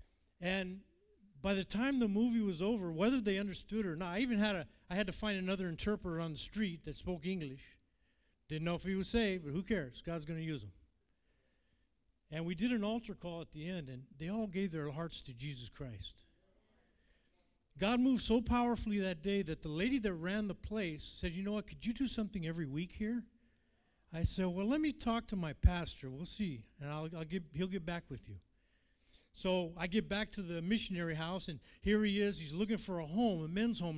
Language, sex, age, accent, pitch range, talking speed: English, male, 50-69, American, 155-215 Hz, 220 wpm